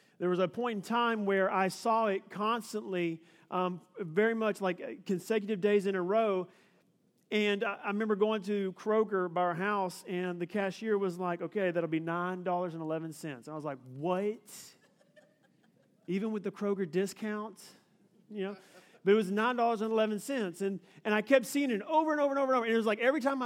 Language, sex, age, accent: English, male, 40-59, American